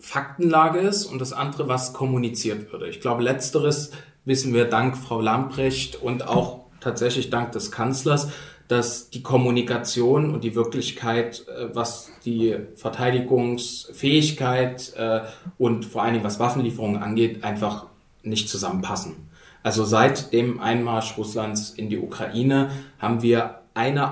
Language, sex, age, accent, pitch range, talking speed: German, male, 30-49, German, 115-150 Hz, 130 wpm